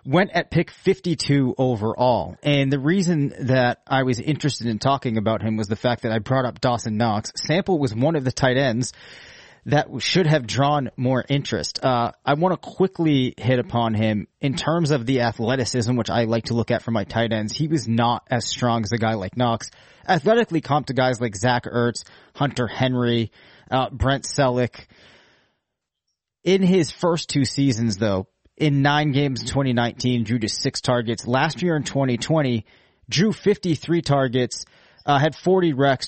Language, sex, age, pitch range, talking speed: English, male, 30-49, 120-150 Hz, 180 wpm